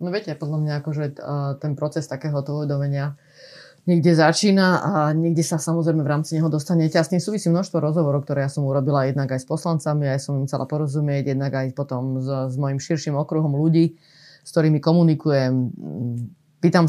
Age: 30-49